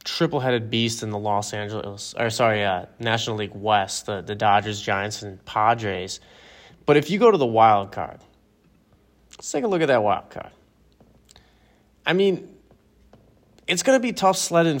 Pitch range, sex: 105-125 Hz, male